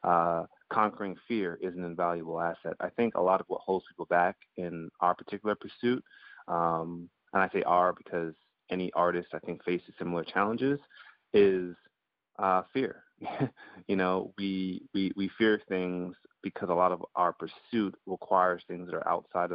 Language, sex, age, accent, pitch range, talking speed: English, male, 30-49, American, 85-95 Hz, 165 wpm